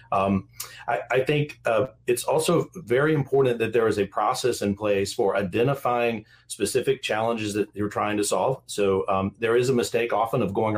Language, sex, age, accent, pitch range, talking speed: English, male, 40-59, American, 105-130 Hz, 190 wpm